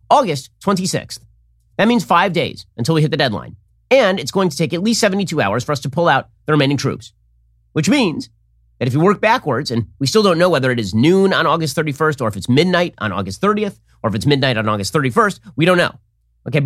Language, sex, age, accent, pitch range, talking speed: English, male, 30-49, American, 115-175 Hz, 235 wpm